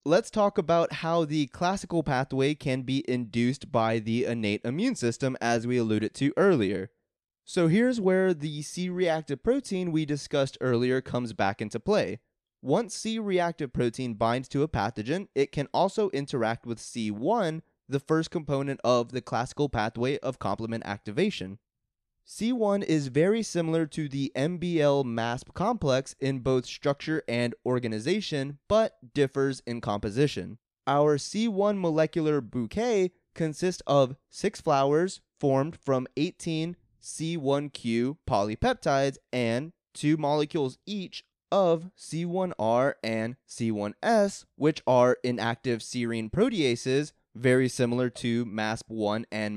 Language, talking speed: English, 125 wpm